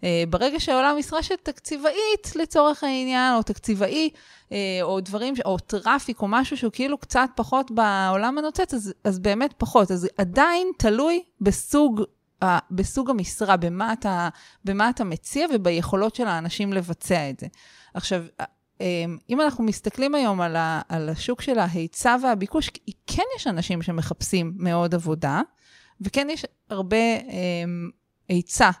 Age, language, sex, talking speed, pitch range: 30-49, English, female, 120 wpm, 180-255 Hz